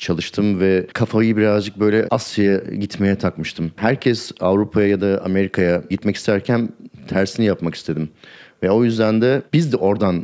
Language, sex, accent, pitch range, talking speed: Turkish, male, native, 95-125 Hz, 145 wpm